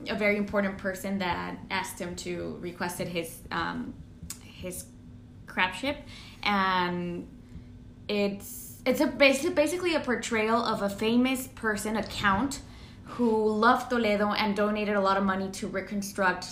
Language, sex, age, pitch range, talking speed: English, female, 10-29, 180-225 Hz, 140 wpm